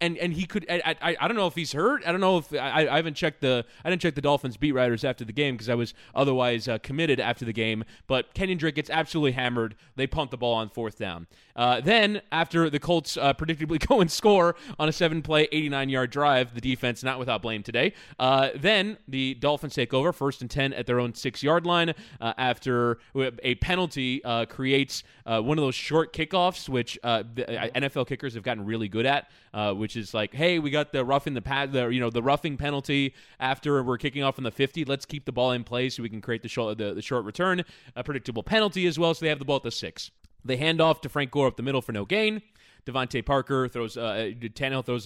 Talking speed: 250 wpm